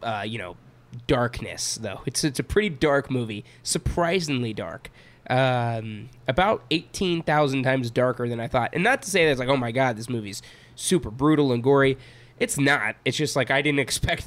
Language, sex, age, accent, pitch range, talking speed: English, male, 20-39, American, 120-150 Hz, 190 wpm